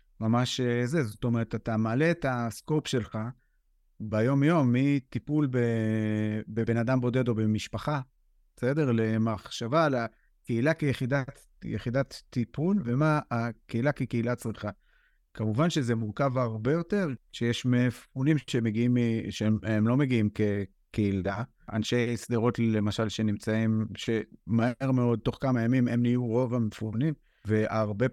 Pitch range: 110-130 Hz